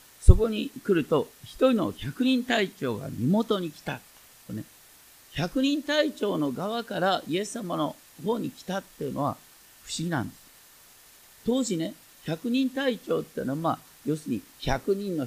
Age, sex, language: 50-69, male, Japanese